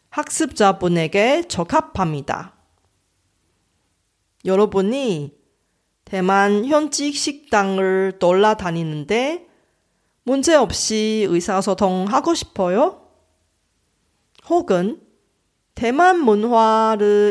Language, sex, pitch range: Korean, female, 185-275 Hz